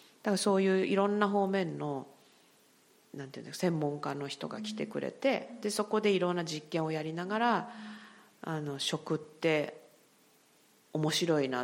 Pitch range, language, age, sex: 150-215 Hz, Japanese, 40-59, female